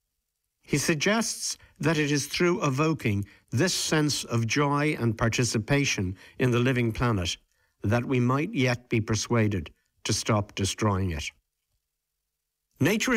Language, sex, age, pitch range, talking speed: English, male, 60-79, 95-145 Hz, 130 wpm